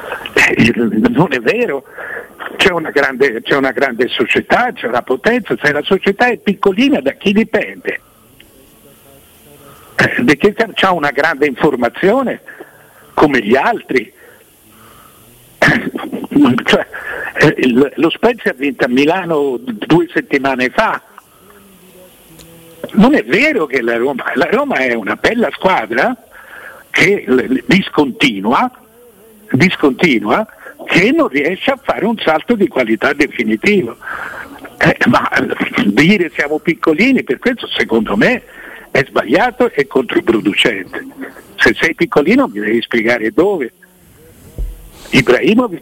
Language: Italian